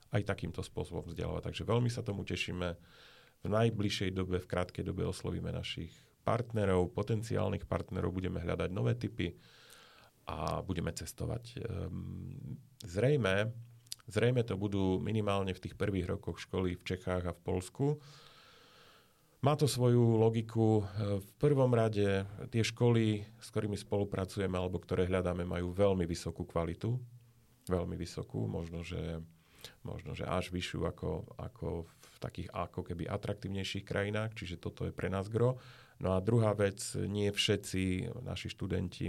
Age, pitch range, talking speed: 40-59, 90-115 Hz, 140 wpm